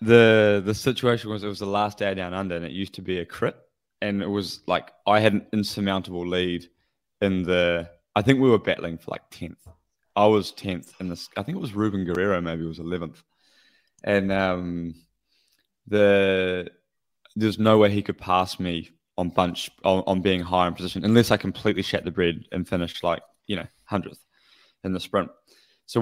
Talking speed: 195 wpm